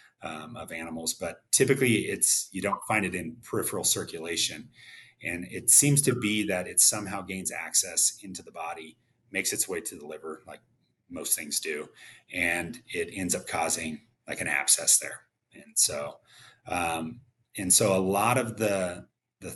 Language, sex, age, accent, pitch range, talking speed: English, male, 30-49, American, 85-115 Hz, 170 wpm